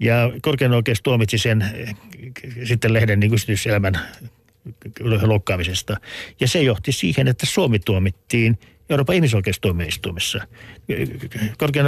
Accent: native